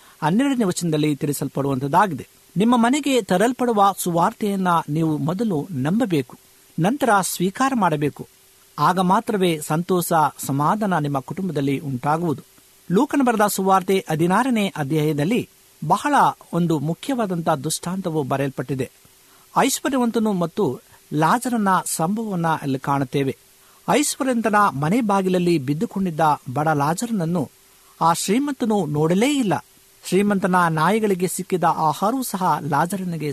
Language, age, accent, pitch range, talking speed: Kannada, 50-69, native, 150-205 Hz, 45 wpm